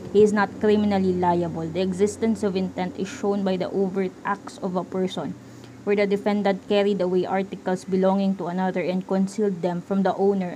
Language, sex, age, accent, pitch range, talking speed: English, female, 20-39, Filipino, 185-210 Hz, 190 wpm